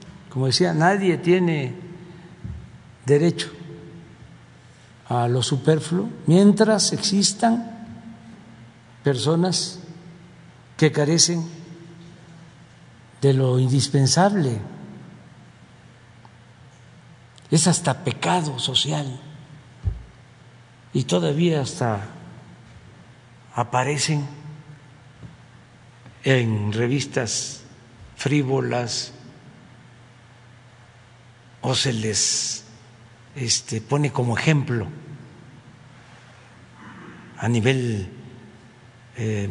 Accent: Mexican